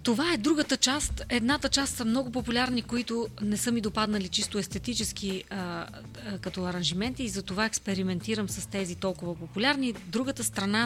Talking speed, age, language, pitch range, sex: 160 wpm, 30-49, Bulgarian, 190-245 Hz, female